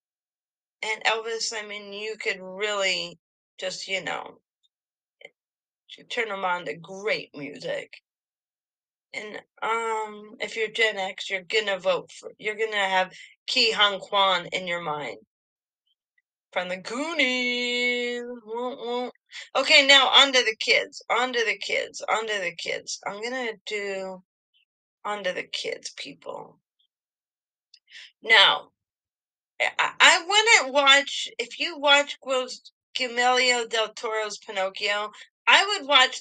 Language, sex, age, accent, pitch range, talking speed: English, female, 30-49, American, 200-270 Hz, 120 wpm